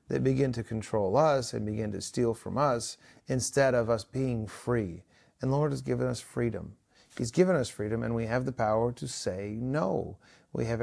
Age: 40-59